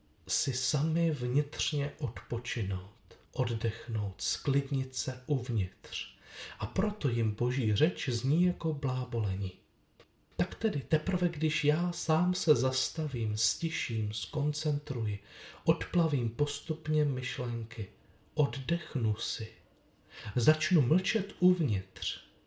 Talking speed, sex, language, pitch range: 90 wpm, male, Czech, 110-145 Hz